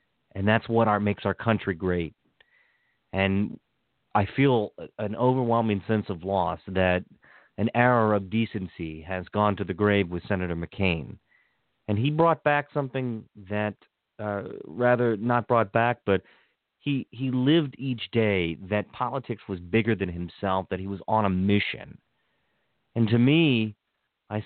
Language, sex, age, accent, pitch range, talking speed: English, male, 40-59, American, 95-115 Hz, 155 wpm